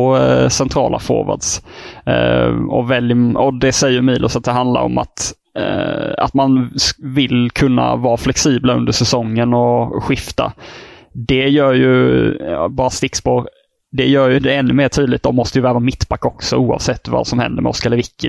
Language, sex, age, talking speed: English, male, 20-39, 155 wpm